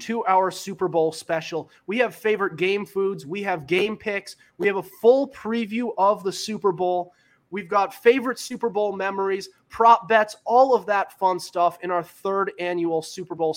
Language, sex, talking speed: English, male, 185 wpm